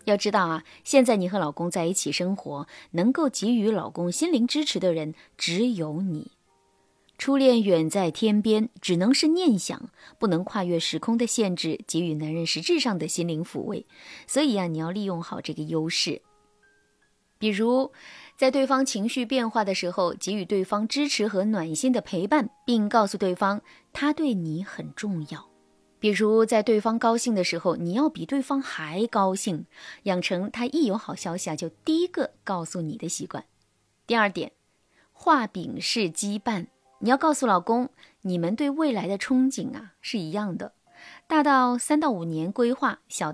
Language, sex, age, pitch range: Chinese, female, 20-39, 175-260 Hz